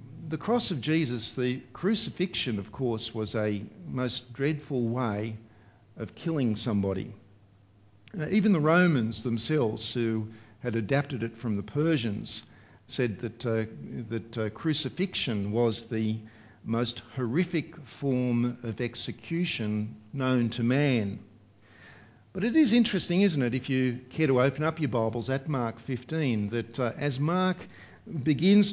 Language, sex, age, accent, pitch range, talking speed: English, male, 50-69, Australian, 110-155 Hz, 135 wpm